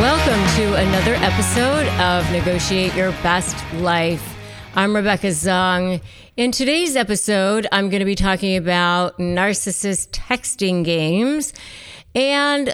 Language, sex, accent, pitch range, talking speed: English, female, American, 165-215 Hz, 120 wpm